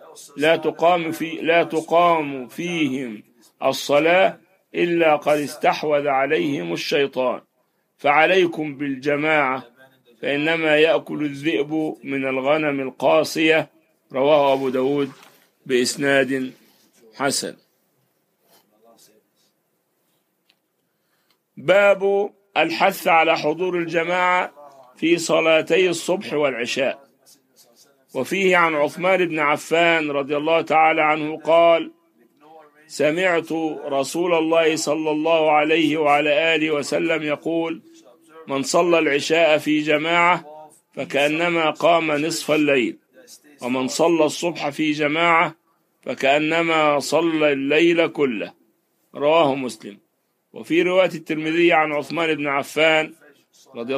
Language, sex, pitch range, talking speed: English, male, 145-165 Hz, 90 wpm